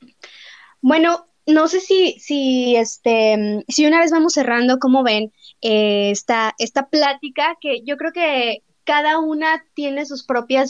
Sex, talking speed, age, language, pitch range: female, 150 wpm, 20-39, Spanish, 225-285 Hz